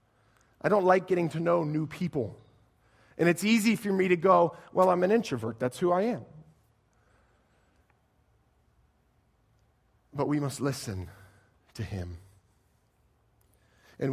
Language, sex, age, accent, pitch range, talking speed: English, male, 40-59, American, 115-165 Hz, 125 wpm